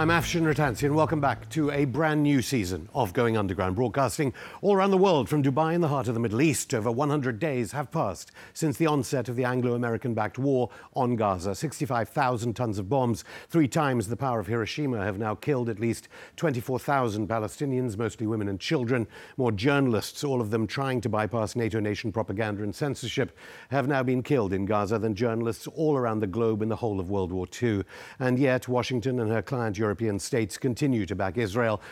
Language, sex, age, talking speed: English, male, 50-69, 200 wpm